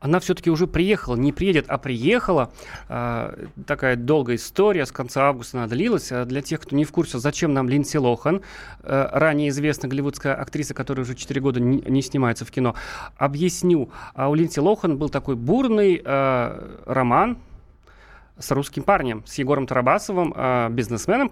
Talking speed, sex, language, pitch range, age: 165 wpm, male, Russian, 130-165 Hz, 30-49